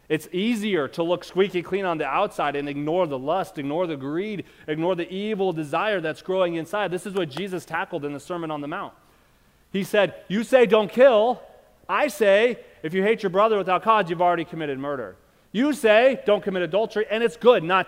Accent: American